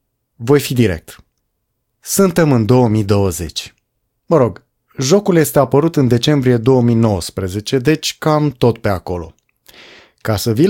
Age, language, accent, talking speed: 30-49, English, Romanian, 125 wpm